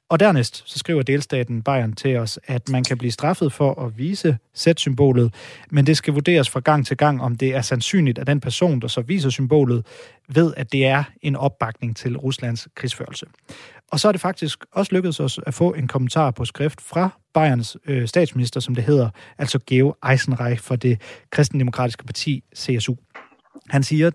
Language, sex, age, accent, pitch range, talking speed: Danish, male, 30-49, native, 125-150 Hz, 185 wpm